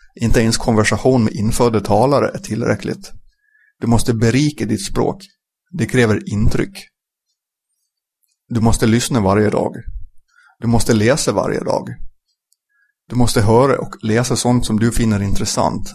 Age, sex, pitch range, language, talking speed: 30-49, male, 105-125 Hz, Swedish, 135 wpm